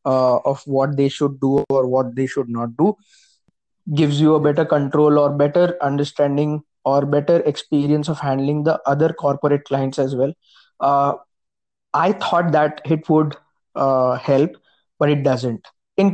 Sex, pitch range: male, 145-175 Hz